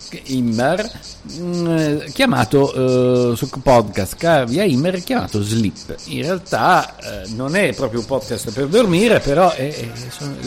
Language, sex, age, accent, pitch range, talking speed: Italian, male, 50-69, native, 105-155 Hz, 140 wpm